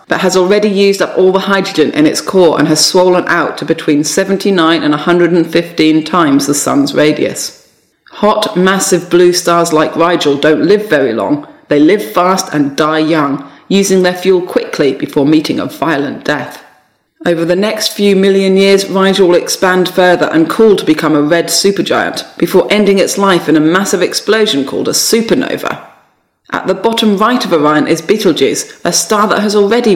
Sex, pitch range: female, 165-205 Hz